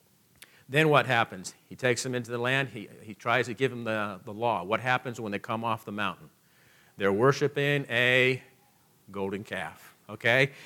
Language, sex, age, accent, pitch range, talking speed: English, male, 50-69, American, 115-145 Hz, 180 wpm